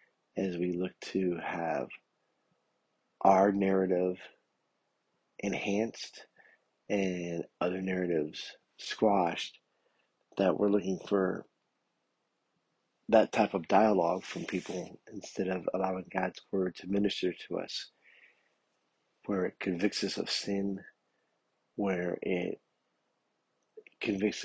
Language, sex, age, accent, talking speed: English, male, 50-69, American, 100 wpm